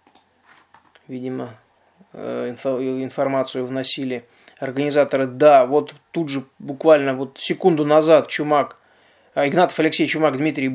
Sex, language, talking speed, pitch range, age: male, Russian, 95 wpm, 135-160 Hz, 20-39